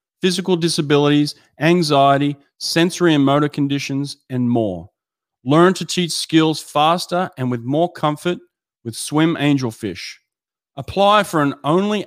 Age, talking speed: 30-49, 125 wpm